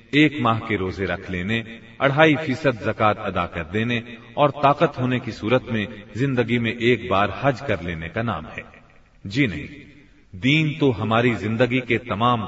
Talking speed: 175 wpm